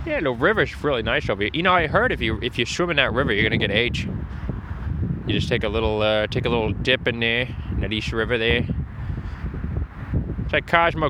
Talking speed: 230 wpm